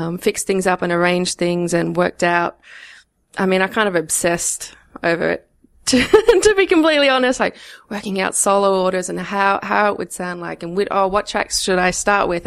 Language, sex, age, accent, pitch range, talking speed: English, female, 20-39, Australian, 170-190 Hz, 210 wpm